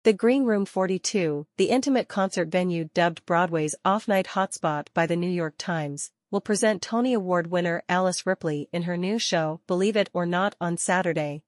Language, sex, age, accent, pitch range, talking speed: English, female, 40-59, American, 165-200 Hz, 180 wpm